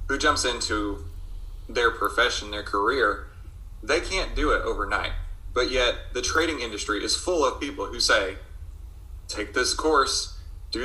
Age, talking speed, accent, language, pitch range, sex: 30-49, 150 wpm, American, English, 85-125 Hz, male